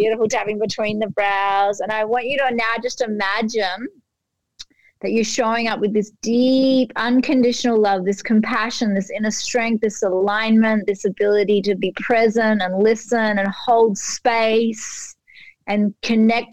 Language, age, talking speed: English, 30-49, 150 wpm